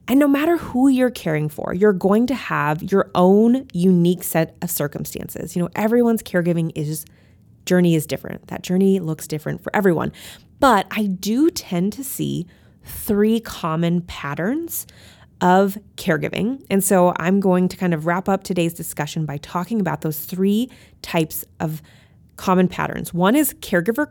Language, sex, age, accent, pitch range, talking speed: English, female, 20-39, American, 170-215 Hz, 160 wpm